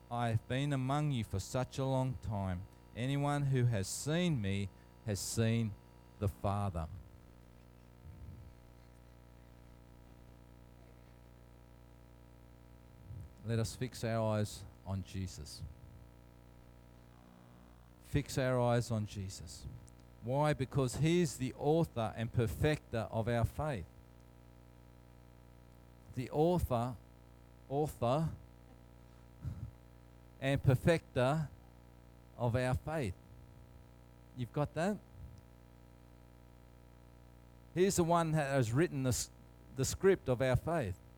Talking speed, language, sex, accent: 95 wpm, English, male, Australian